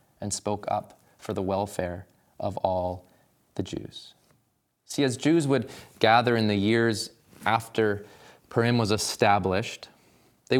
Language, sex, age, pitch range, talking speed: English, male, 20-39, 105-150 Hz, 130 wpm